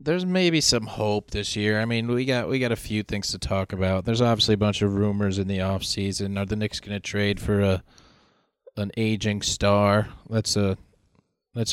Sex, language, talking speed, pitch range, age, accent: male, English, 215 wpm, 95-115 Hz, 20-39, American